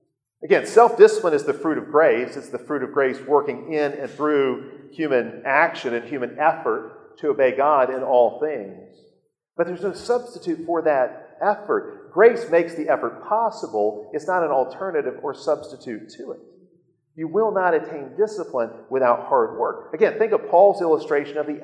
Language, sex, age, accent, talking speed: English, male, 40-59, American, 170 wpm